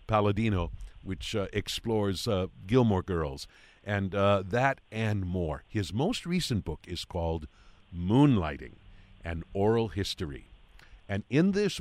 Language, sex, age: English, male, 50-69